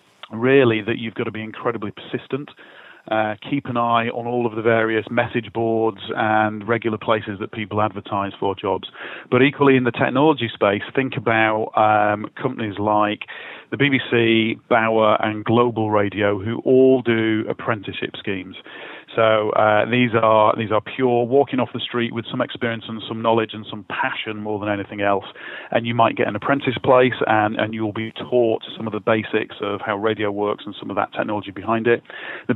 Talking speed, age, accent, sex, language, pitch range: 185 wpm, 40-59, British, male, English, 105-120 Hz